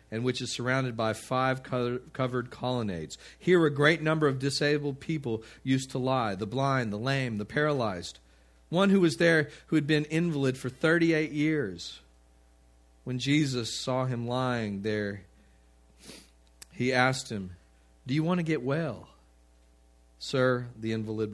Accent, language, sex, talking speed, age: American, English, male, 150 wpm, 40-59